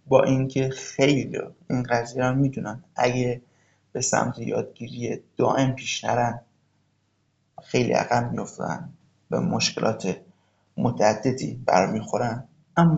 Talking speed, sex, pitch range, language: 100 wpm, male, 120-135 Hz, Persian